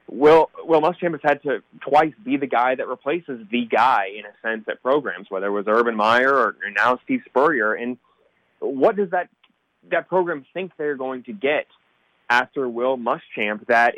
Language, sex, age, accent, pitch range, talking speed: English, male, 20-39, American, 120-155 Hz, 185 wpm